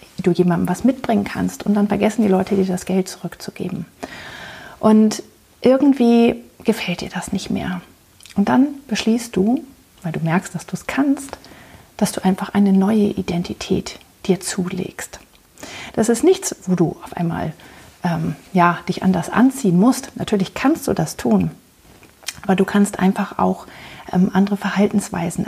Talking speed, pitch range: 155 wpm, 180-210 Hz